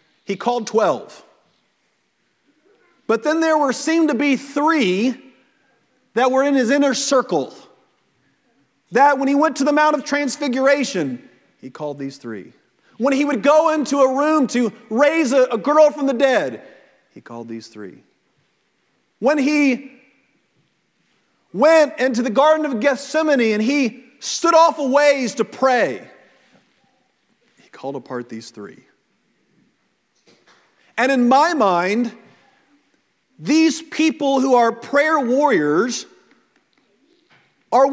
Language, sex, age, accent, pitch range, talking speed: English, male, 40-59, American, 235-300 Hz, 130 wpm